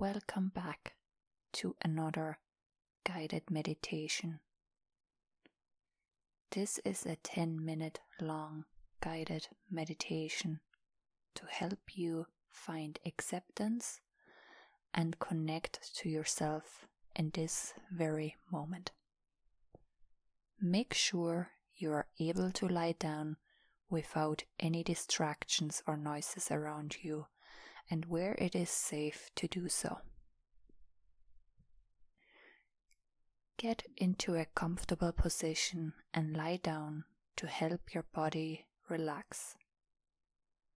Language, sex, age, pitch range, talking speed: English, female, 20-39, 155-180 Hz, 95 wpm